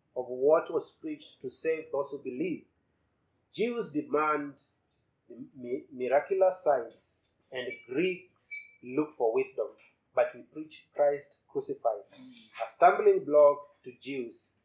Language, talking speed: English, 125 wpm